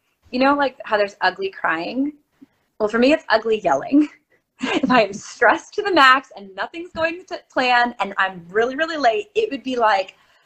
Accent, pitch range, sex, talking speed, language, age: American, 195-270 Hz, female, 190 wpm, English, 20-39